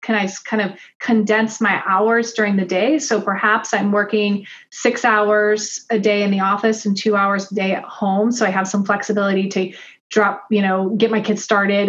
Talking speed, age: 205 wpm, 30-49